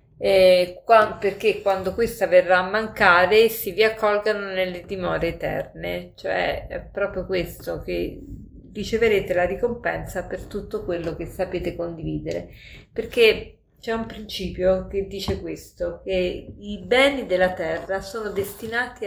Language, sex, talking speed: Italian, female, 130 wpm